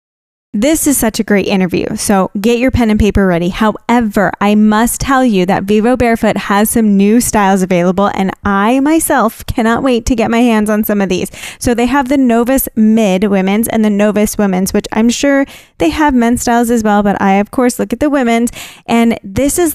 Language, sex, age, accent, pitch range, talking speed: English, female, 10-29, American, 210-250 Hz, 215 wpm